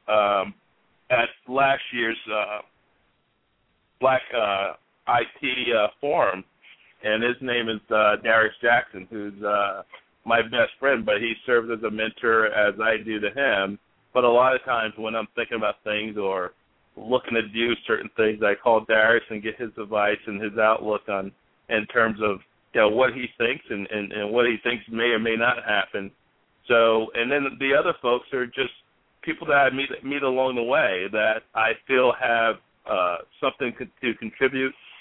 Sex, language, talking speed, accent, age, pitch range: male, English, 180 wpm, American, 50-69, 110-130 Hz